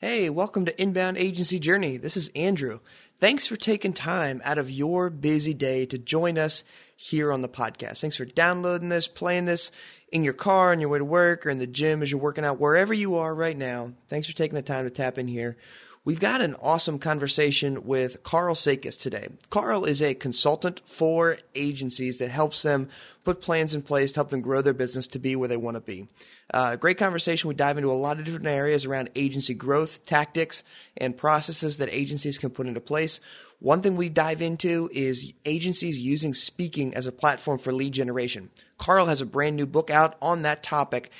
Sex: male